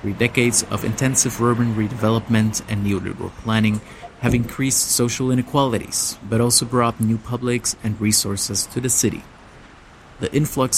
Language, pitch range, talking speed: German, 100-120 Hz, 140 wpm